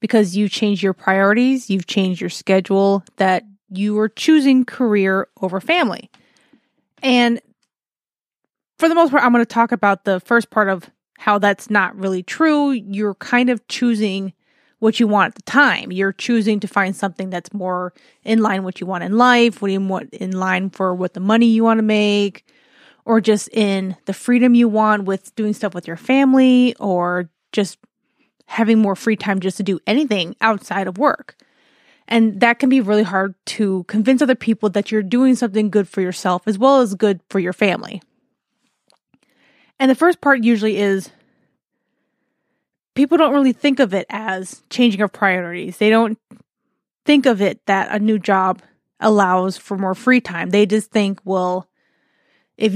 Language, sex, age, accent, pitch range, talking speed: English, female, 20-39, American, 195-240 Hz, 180 wpm